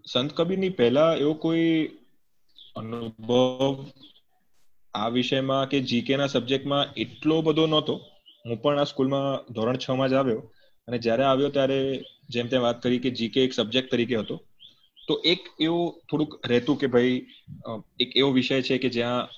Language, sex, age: Gujarati, male, 20-39